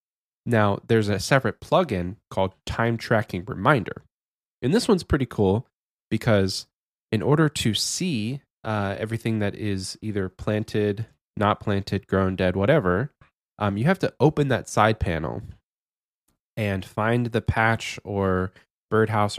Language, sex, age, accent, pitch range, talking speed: English, male, 20-39, American, 100-115 Hz, 135 wpm